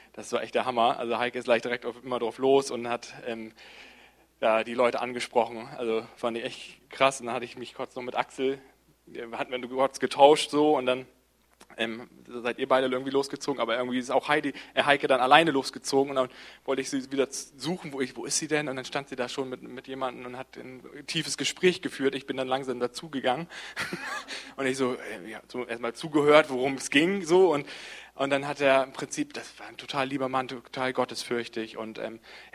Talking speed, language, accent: 220 wpm, German, German